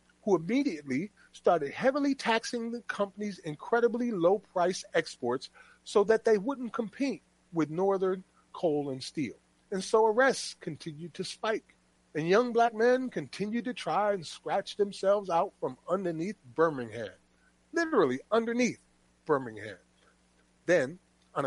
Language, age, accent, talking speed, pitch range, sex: English, 40-59, American, 125 wpm, 140-230 Hz, male